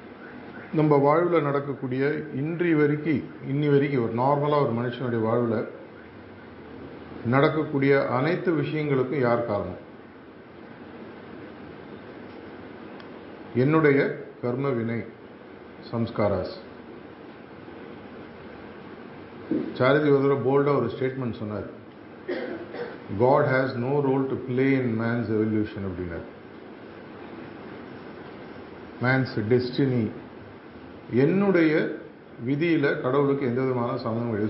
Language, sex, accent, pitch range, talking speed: Tamil, male, native, 120-145 Hz, 80 wpm